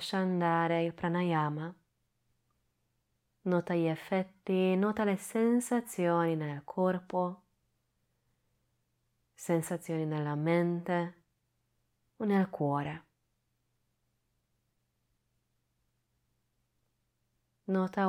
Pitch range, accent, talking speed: 150-190 Hz, native, 65 wpm